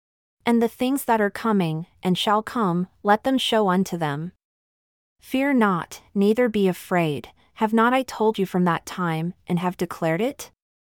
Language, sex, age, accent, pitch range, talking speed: English, female, 30-49, American, 170-220 Hz, 170 wpm